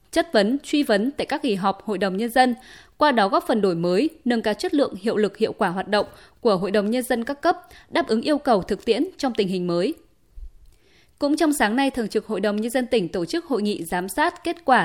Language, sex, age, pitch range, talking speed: Vietnamese, female, 20-39, 210-280 Hz, 260 wpm